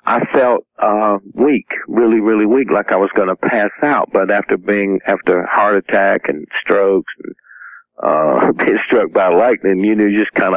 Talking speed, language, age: 180 wpm, English, 50-69